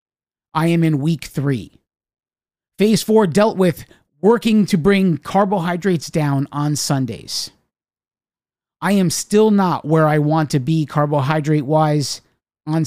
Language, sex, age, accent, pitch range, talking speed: English, male, 30-49, American, 145-180 Hz, 130 wpm